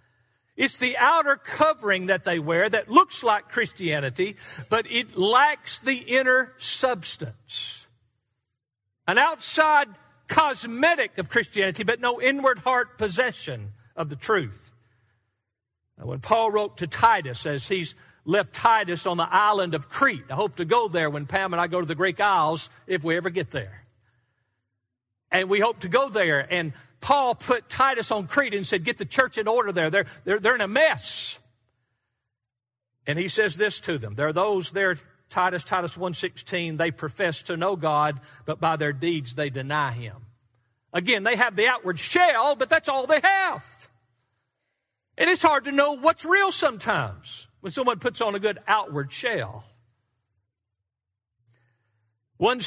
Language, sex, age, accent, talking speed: English, male, 50-69, American, 160 wpm